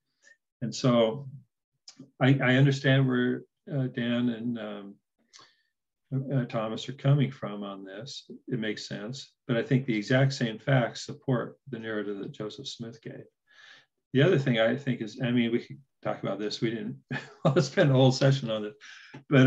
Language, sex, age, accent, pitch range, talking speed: English, male, 50-69, American, 105-135 Hz, 175 wpm